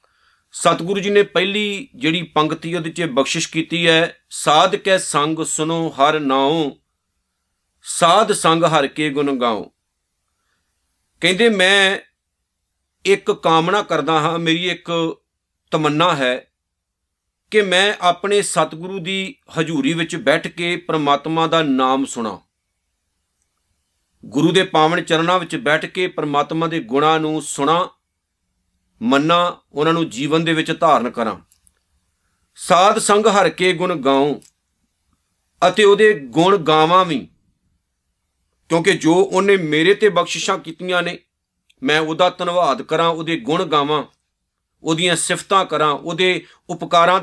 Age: 50-69